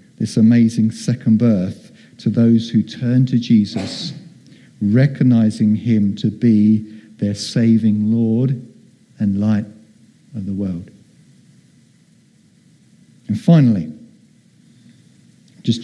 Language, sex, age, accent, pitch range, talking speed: English, male, 50-69, British, 110-145 Hz, 95 wpm